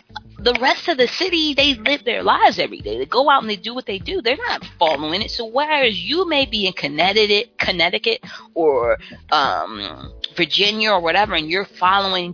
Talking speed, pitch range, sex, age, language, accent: 195 wpm, 165-260 Hz, female, 20-39, English, American